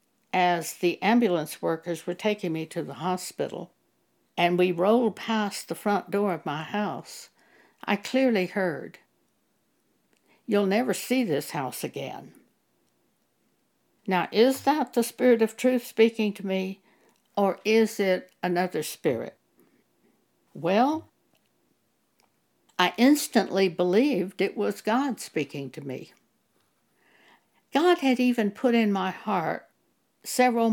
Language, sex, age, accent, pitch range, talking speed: English, female, 60-79, American, 175-230 Hz, 120 wpm